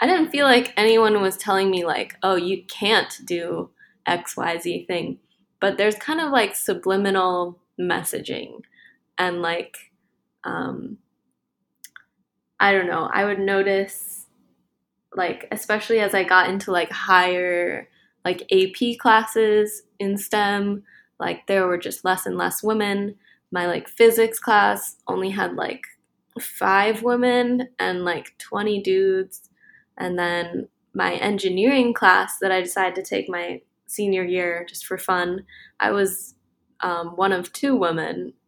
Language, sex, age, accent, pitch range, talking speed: English, female, 10-29, American, 185-225 Hz, 140 wpm